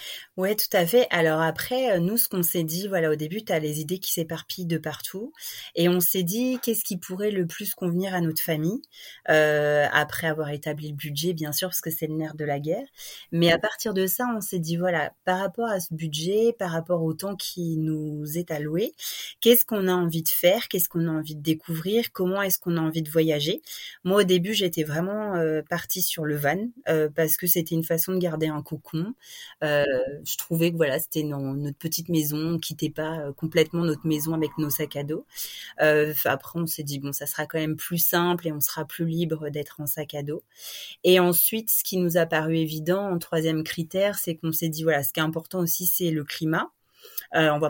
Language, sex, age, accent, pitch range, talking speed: French, female, 30-49, French, 155-185 Hz, 235 wpm